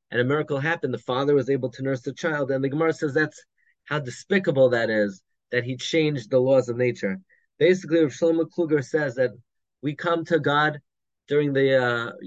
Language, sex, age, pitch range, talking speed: English, male, 30-49, 125-160 Hz, 200 wpm